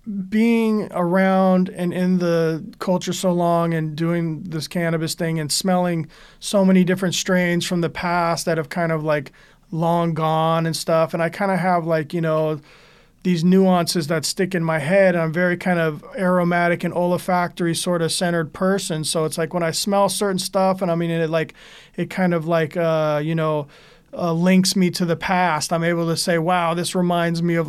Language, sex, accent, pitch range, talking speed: English, male, American, 165-185 Hz, 200 wpm